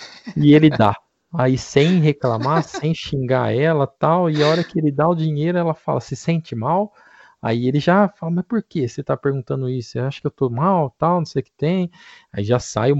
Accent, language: Brazilian, Portuguese